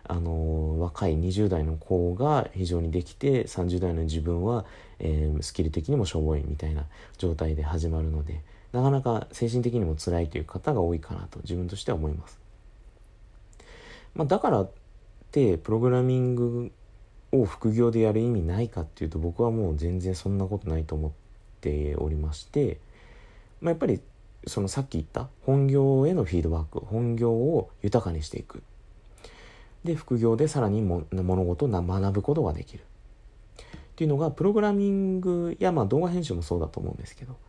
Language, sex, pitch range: Japanese, male, 90-125 Hz